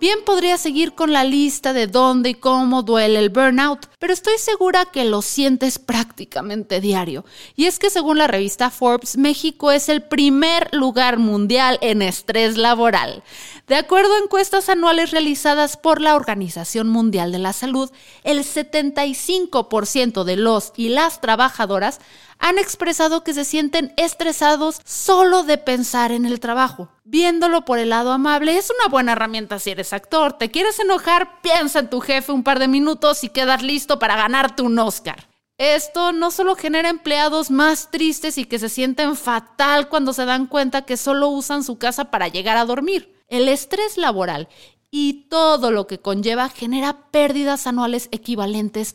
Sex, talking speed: female, 165 wpm